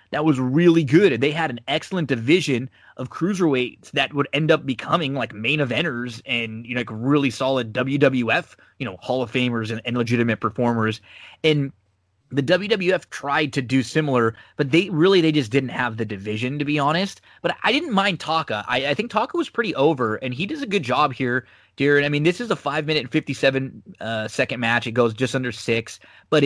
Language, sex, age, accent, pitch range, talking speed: English, male, 20-39, American, 120-155 Hz, 210 wpm